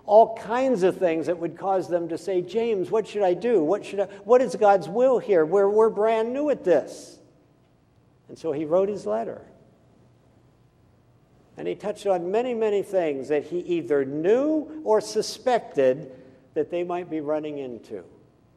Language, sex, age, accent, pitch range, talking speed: English, male, 60-79, American, 135-200 Hz, 170 wpm